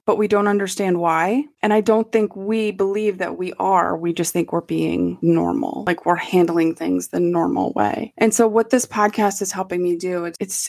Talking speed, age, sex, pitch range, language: 210 wpm, 20-39, female, 175-215 Hz, English